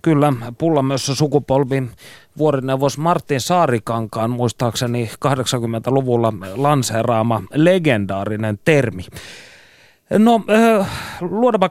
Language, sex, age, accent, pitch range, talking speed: Finnish, male, 30-49, native, 120-160 Hz, 70 wpm